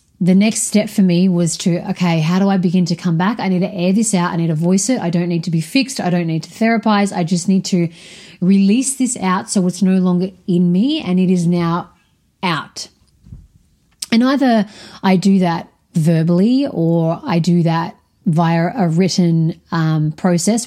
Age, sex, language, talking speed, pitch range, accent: 30-49, female, English, 205 wpm, 170-200 Hz, Australian